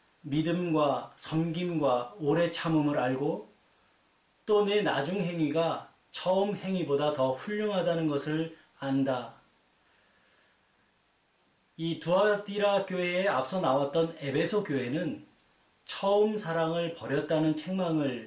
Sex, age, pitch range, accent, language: male, 30-49, 140-190 Hz, native, Korean